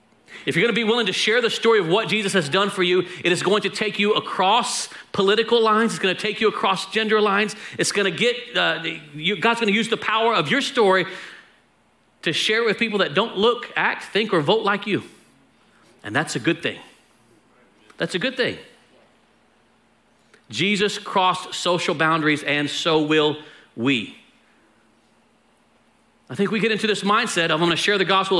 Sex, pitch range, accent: male, 170-215 Hz, American